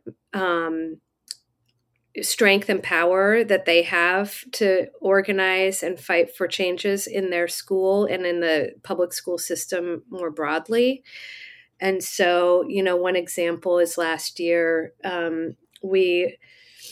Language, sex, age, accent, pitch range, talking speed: English, female, 40-59, American, 170-190 Hz, 125 wpm